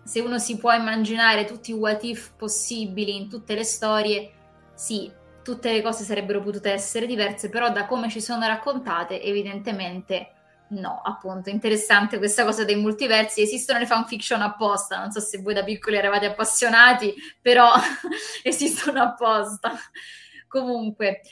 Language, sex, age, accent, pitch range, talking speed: Italian, female, 20-39, native, 205-240 Hz, 145 wpm